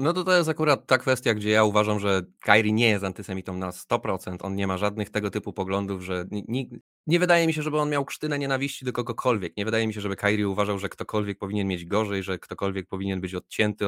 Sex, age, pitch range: male, 20-39, 95-110 Hz